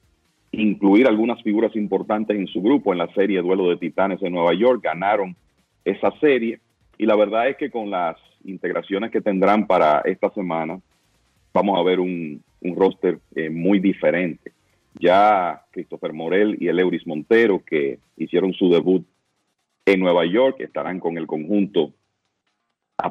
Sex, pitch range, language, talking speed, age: male, 85-105 Hz, Spanish, 155 wpm, 40-59